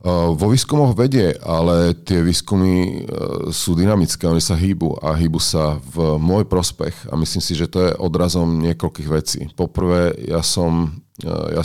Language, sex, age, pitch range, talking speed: Czech, male, 40-59, 80-90 Hz, 175 wpm